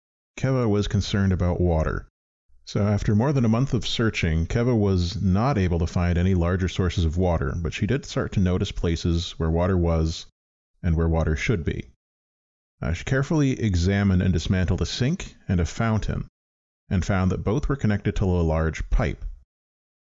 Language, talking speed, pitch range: English, 180 wpm, 80-105 Hz